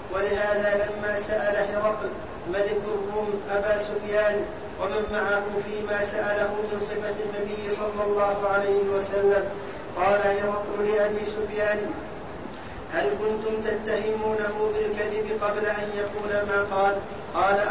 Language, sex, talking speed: Arabic, male, 110 wpm